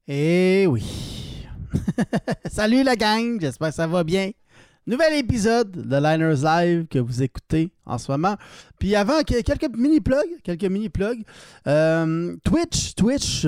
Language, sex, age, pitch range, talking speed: French, male, 30-49, 145-205 Hz, 145 wpm